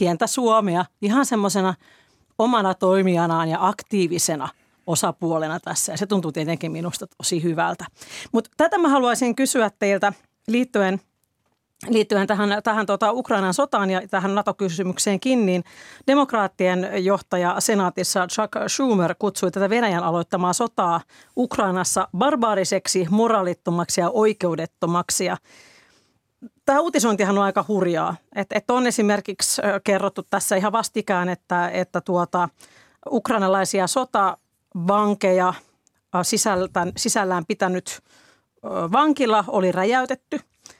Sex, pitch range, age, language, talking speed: female, 180-220 Hz, 40-59, Finnish, 105 wpm